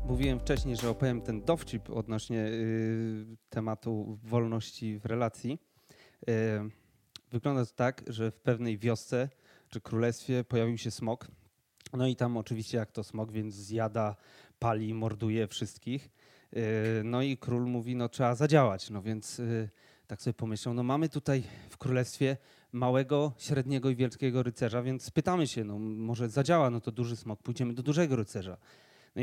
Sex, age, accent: male, 30-49, native